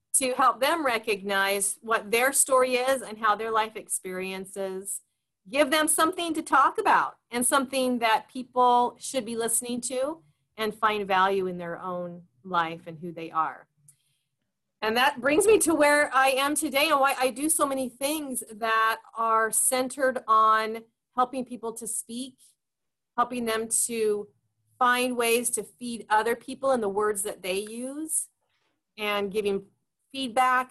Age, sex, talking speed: 30-49, female, 155 wpm